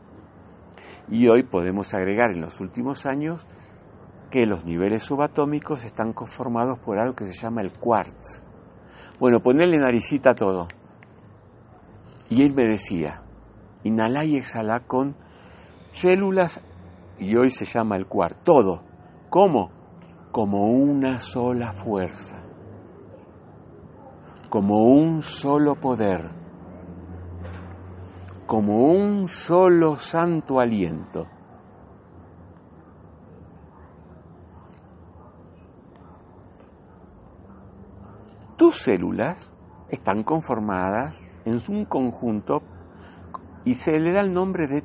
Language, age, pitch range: Spanish, 60-79, 90-130 Hz